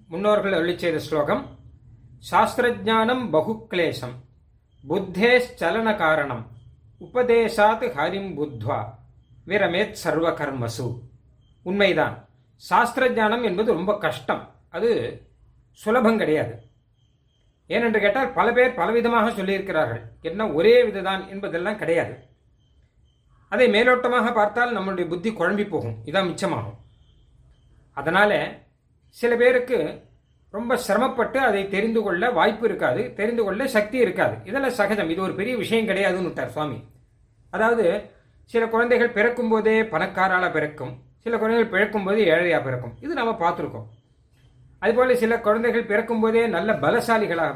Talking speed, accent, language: 110 wpm, native, Tamil